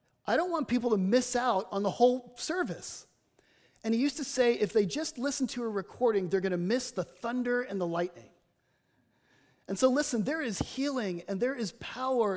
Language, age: English, 30-49